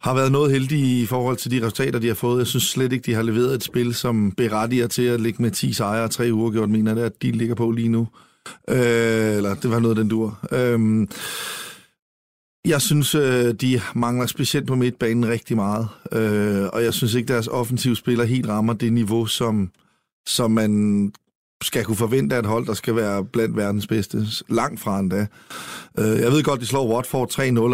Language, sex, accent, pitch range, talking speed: Danish, male, native, 110-130 Hz, 200 wpm